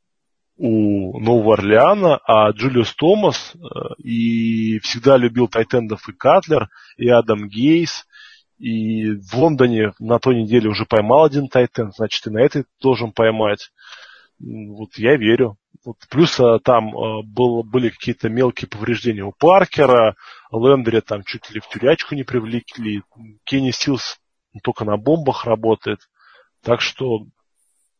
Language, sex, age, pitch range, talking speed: Russian, male, 20-39, 110-130 Hz, 120 wpm